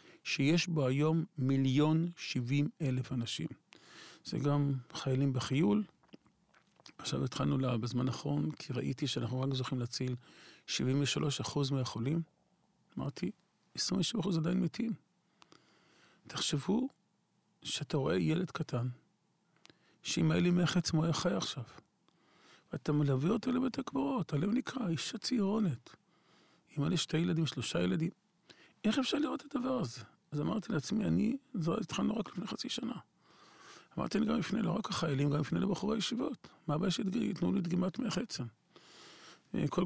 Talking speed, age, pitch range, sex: 140 wpm, 50-69, 140-195 Hz, male